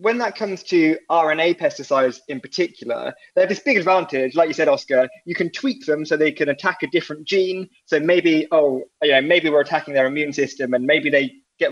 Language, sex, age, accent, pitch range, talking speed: English, male, 20-39, British, 140-185 Hz, 215 wpm